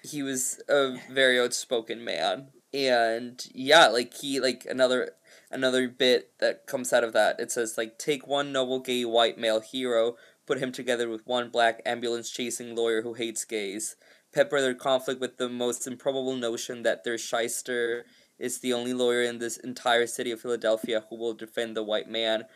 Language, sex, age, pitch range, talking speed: English, male, 20-39, 115-135 Hz, 180 wpm